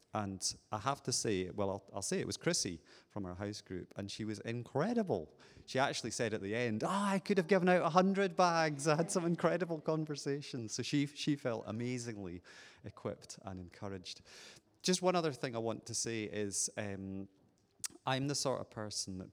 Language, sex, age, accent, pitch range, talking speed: English, male, 30-49, British, 95-130 Hz, 200 wpm